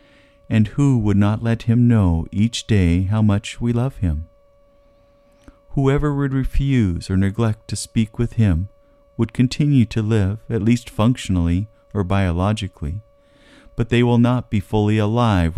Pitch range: 95-125 Hz